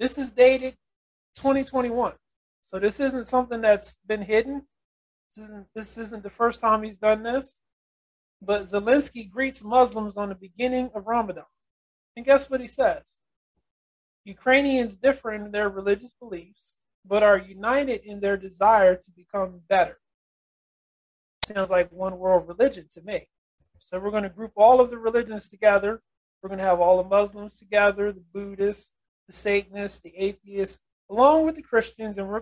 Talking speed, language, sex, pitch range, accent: 155 wpm, English, male, 195-240 Hz, American